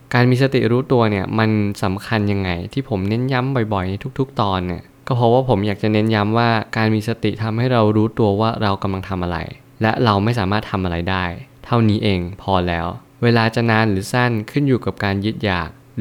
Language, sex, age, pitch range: Thai, male, 20-39, 100-120 Hz